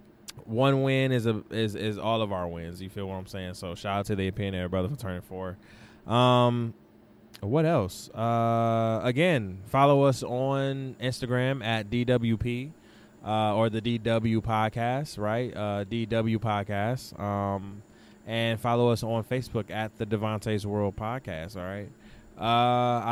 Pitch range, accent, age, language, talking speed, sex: 105-135 Hz, American, 20-39, English, 155 wpm, male